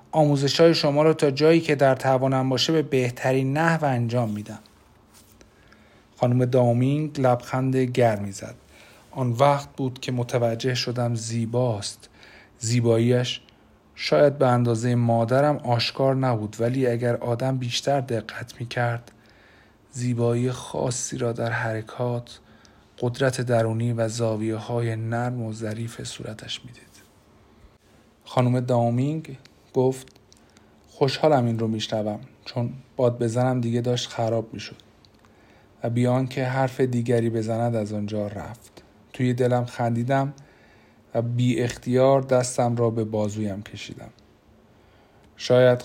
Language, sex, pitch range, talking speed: Persian, male, 115-130 Hz, 115 wpm